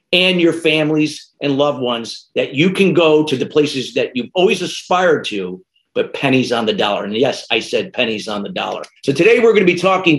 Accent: American